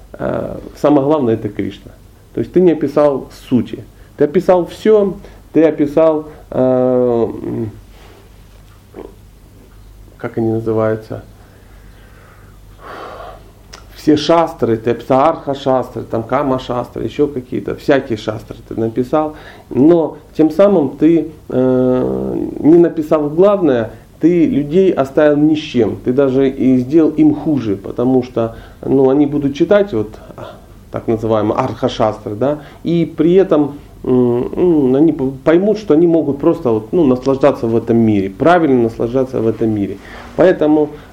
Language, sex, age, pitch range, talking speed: Russian, male, 40-59, 110-150 Hz, 125 wpm